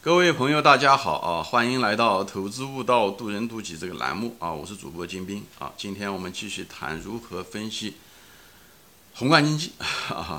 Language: Chinese